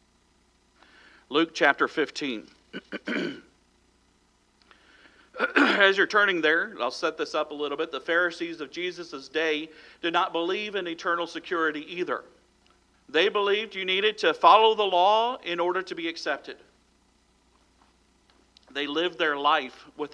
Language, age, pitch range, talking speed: English, 50-69, 150-190 Hz, 130 wpm